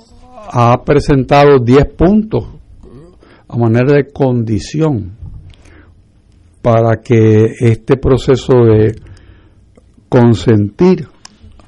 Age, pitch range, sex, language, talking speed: 60-79, 105-140 Hz, male, Spanish, 70 wpm